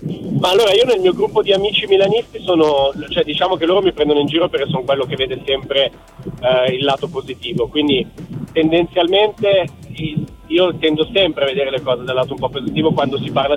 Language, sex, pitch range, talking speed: Italian, male, 140-180 Hz, 200 wpm